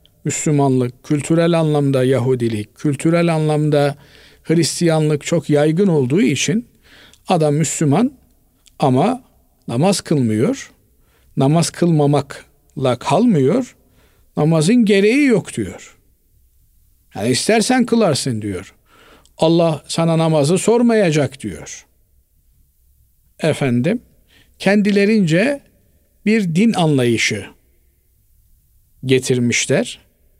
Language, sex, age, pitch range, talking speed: Turkish, male, 50-69, 135-200 Hz, 75 wpm